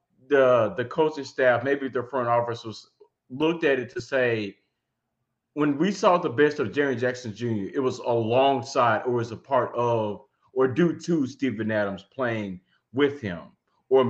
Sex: male